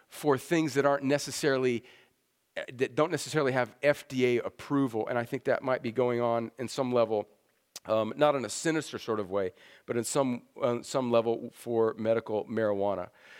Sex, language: male, English